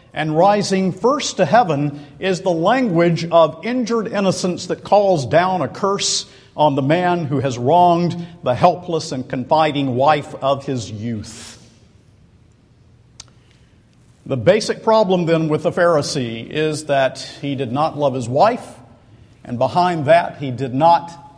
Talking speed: 145 wpm